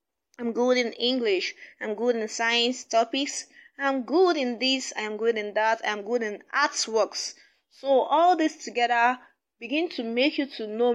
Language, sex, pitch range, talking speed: English, female, 205-280 Hz, 170 wpm